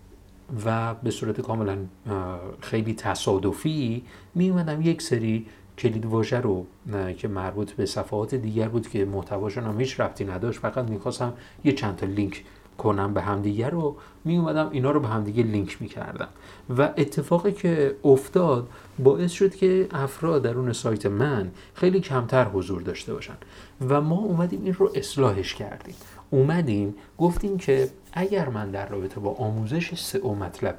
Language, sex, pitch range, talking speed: Persian, male, 100-140 Hz, 150 wpm